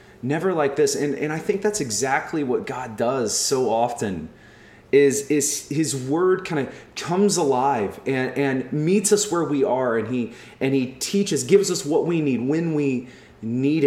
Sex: male